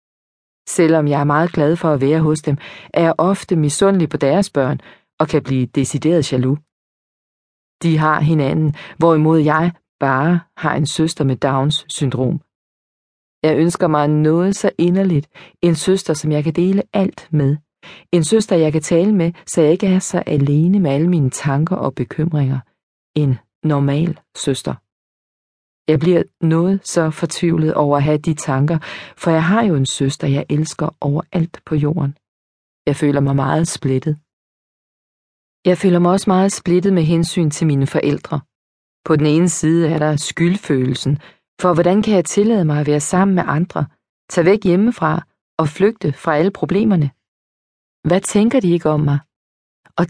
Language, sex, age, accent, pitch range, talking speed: Danish, female, 40-59, native, 145-180 Hz, 165 wpm